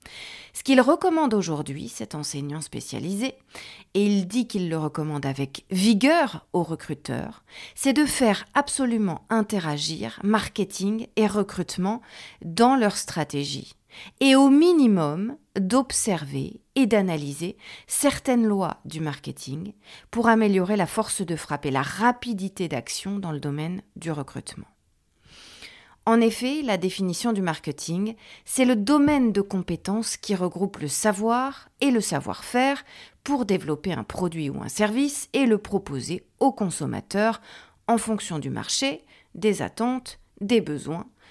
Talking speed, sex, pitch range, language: 130 wpm, female, 160-240 Hz, French